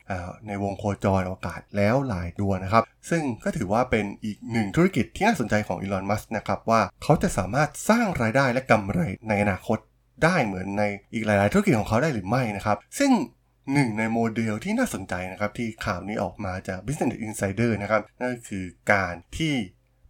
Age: 20-39